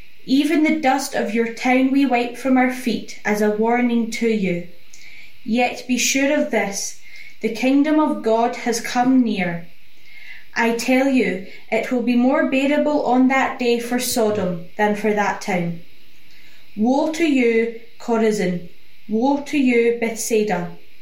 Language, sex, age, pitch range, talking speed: English, female, 10-29, 215-260 Hz, 150 wpm